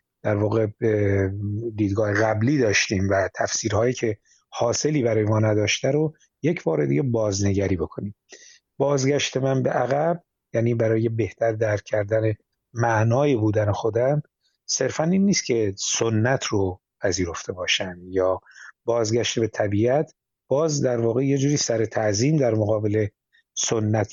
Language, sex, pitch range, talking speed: Persian, male, 105-125 Hz, 125 wpm